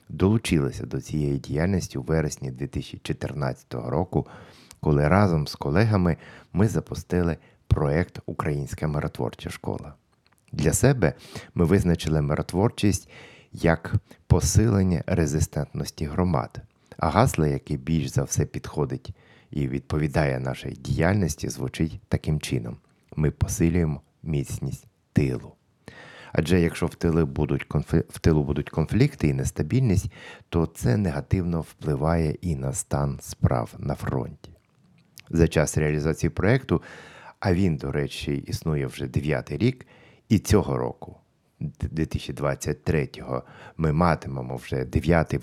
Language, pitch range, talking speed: Ukrainian, 70-90 Hz, 110 wpm